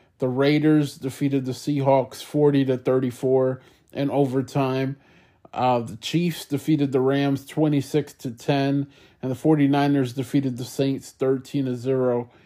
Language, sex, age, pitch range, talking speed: English, male, 20-39, 125-140 Hz, 135 wpm